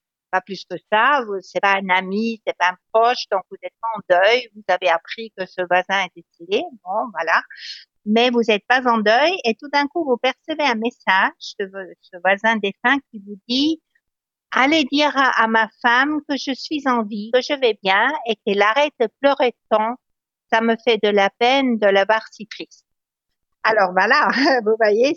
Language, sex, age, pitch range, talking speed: French, female, 60-79, 190-240 Hz, 200 wpm